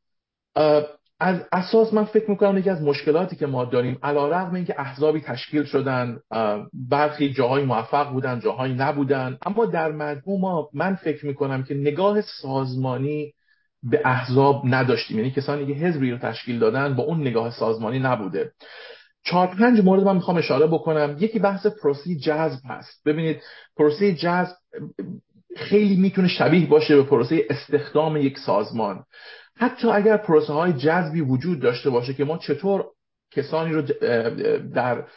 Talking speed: 145 wpm